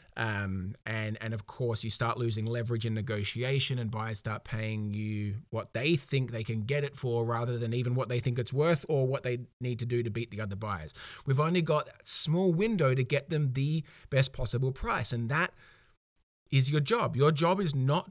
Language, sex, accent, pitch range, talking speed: English, male, Australian, 115-145 Hz, 215 wpm